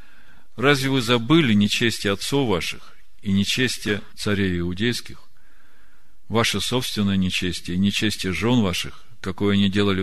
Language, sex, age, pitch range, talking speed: Russian, male, 40-59, 90-115 Hz, 120 wpm